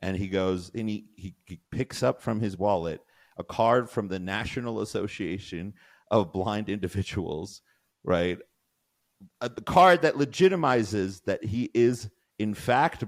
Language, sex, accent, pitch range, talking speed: English, male, American, 90-130 Hz, 140 wpm